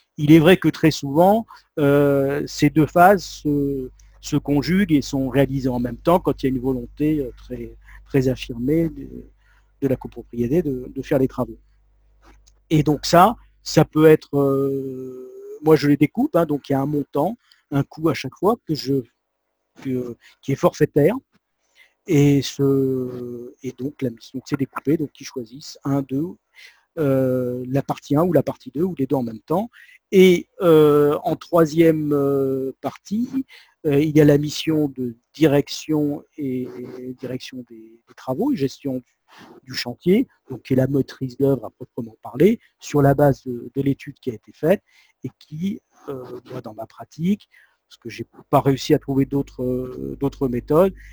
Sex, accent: male, French